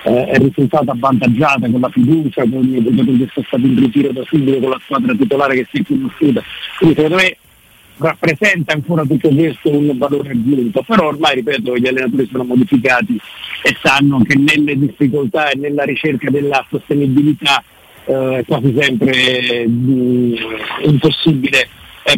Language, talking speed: Italian, 155 wpm